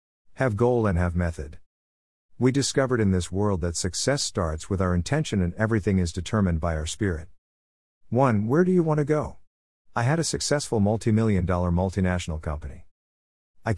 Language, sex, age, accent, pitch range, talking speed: English, male, 50-69, American, 85-115 Hz, 175 wpm